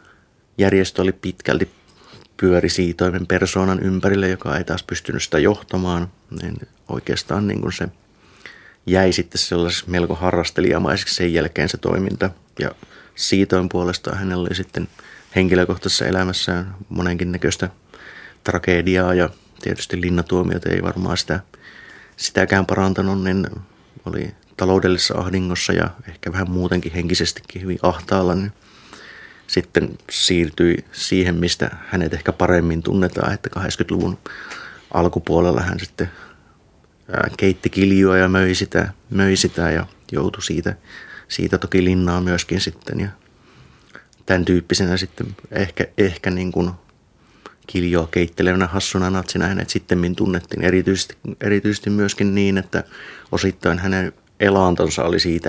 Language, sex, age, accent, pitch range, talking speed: Finnish, male, 30-49, native, 90-95 Hz, 115 wpm